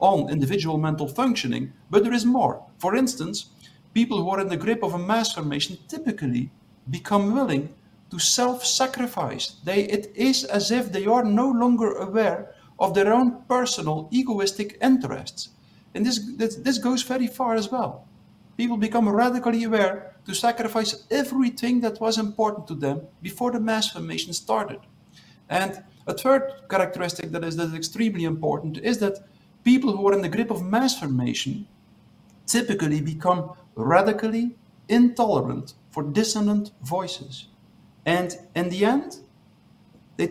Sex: male